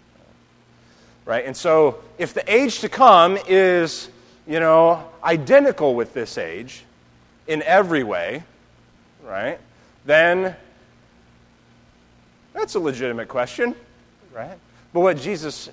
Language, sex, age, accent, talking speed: English, male, 30-49, American, 105 wpm